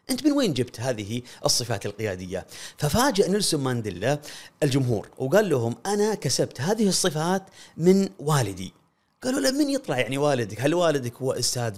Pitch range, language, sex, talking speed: 120-180 Hz, Arabic, male, 150 wpm